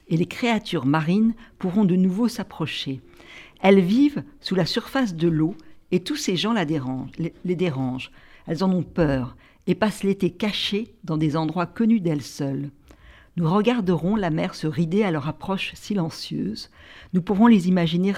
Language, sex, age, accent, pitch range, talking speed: French, female, 60-79, French, 160-195 Hz, 170 wpm